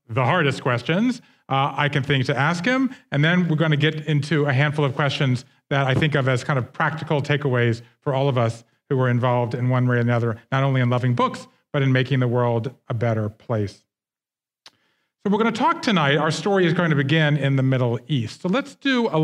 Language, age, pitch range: English, 40-59, 135-175 Hz